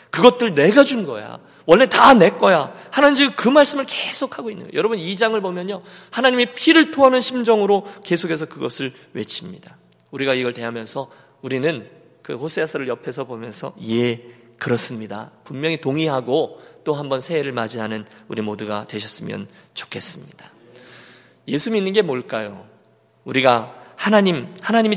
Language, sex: Korean, male